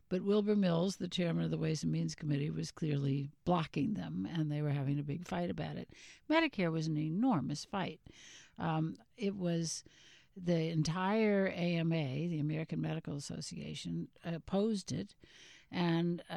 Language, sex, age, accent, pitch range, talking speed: English, female, 60-79, American, 160-200 Hz, 155 wpm